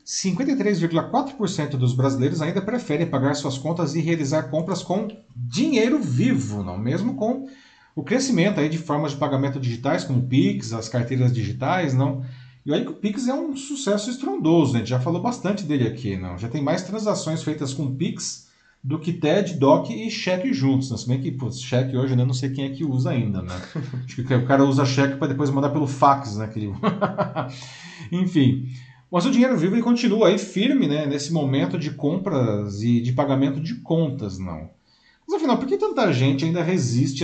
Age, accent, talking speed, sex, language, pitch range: 40-59, Brazilian, 195 wpm, male, Portuguese, 125-175 Hz